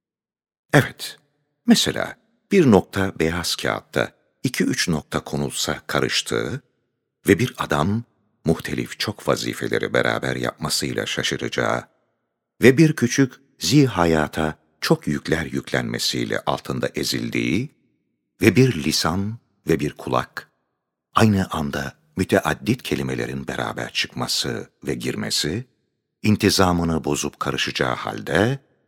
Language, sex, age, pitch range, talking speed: Turkish, male, 60-79, 70-100 Hz, 100 wpm